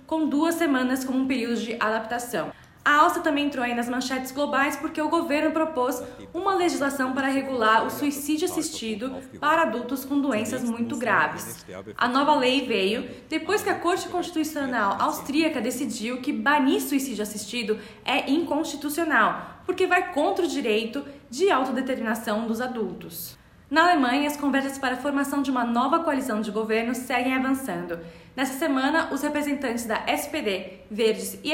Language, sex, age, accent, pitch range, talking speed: Portuguese, female, 20-39, Brazilian, 240-310 Hz, 155 wpm